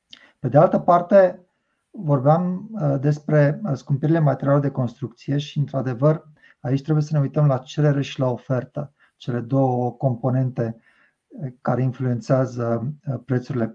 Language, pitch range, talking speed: Romanian, 125-150 Hz, 120 wpm